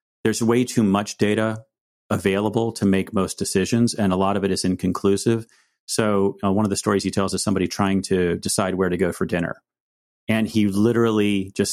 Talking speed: 200 wpm